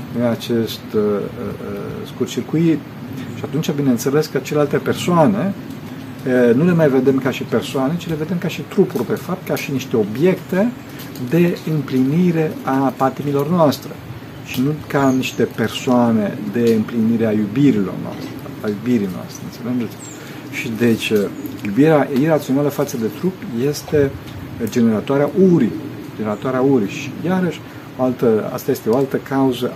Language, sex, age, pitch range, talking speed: Romanian, male, 50-69, 120-150 Hz, 145 wpm